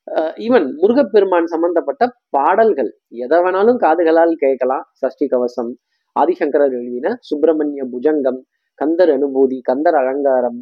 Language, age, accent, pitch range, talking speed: Tamil, 20-39, native, 150-225 Hz, 100 wpm